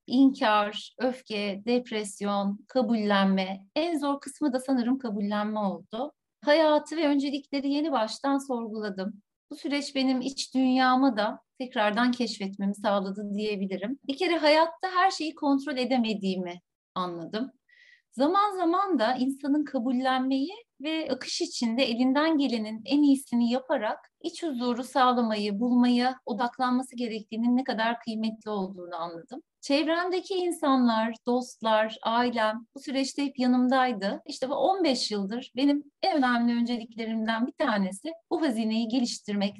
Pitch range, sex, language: 210-285 Hz, female, Turkish